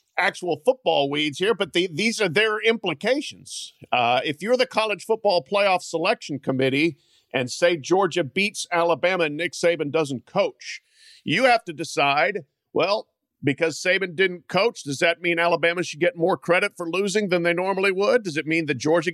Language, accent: English, American